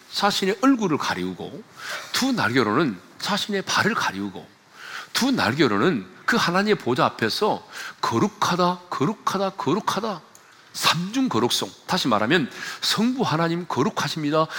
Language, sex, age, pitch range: Korean, male, 40-59, 160-210 Hz